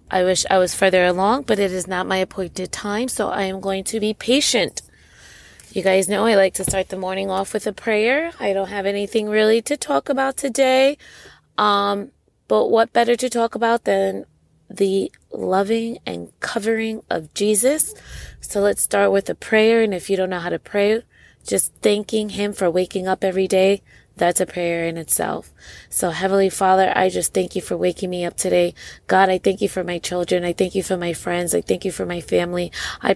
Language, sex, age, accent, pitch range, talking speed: English, female, 20-39, American, 180-205 Hz, 210 wpm